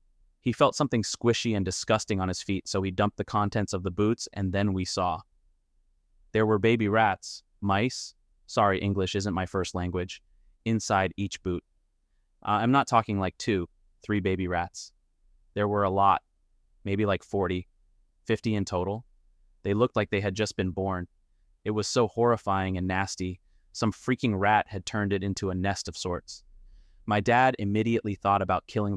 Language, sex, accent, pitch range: English, male, American, 90-105 Hz